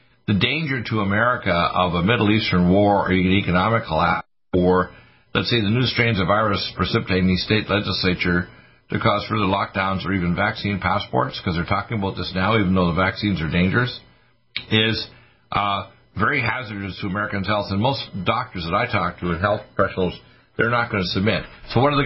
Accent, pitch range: American, 95-115 Hz